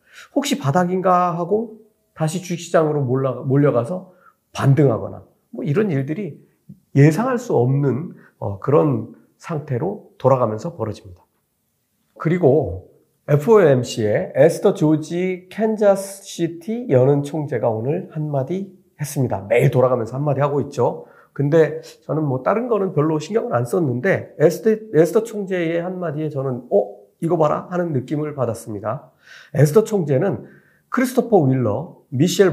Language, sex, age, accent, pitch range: Korean, male, 40-59, native, 130-185 Hz